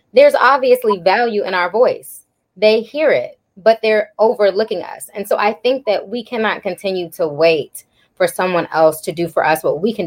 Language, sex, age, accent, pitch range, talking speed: English, female, 20-39, American, 195-245 Hz, 195 wpm